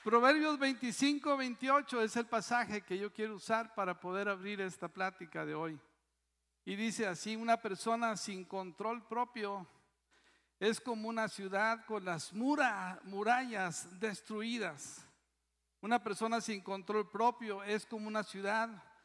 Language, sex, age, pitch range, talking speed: Spanish, male, 50-69, 205-255 Hz, 135 wpm